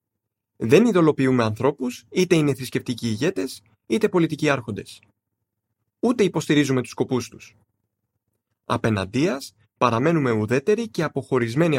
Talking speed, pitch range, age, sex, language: 100 wpm, 110-150 Hz, 30-49, male, Greek